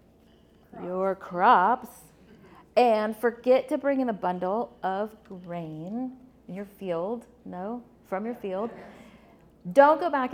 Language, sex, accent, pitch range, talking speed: English, female, American, 185-260 Hz, 120 wpm